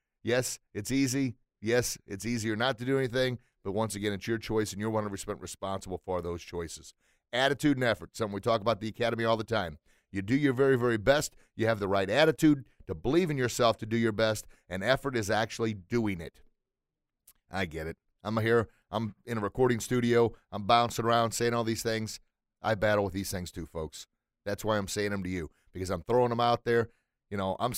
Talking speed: 220 wpm